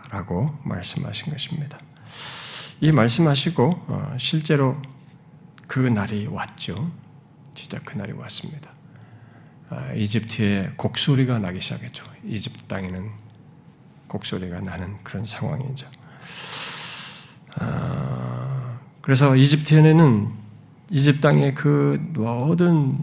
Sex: male